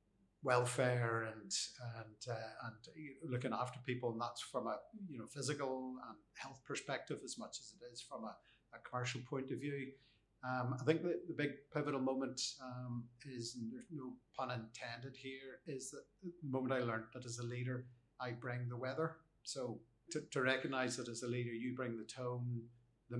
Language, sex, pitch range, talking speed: English, male, 120-130 Hz, 190 wpm